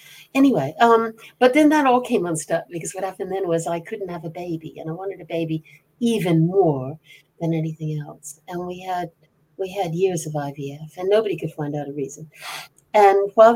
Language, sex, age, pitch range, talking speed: English, female, 60-79, 155-185 Hz, 200 wpm